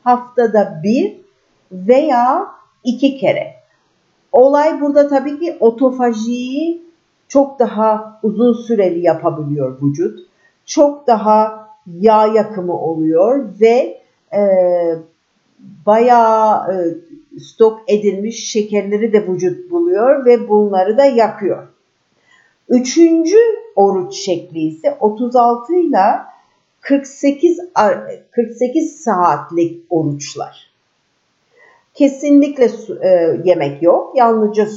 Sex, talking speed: female, 90 wpm